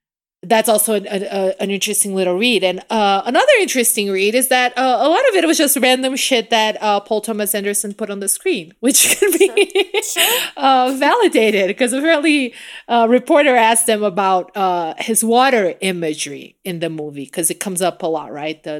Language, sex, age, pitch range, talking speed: English, female, 30-49, 205-280 Hz, 190 wpm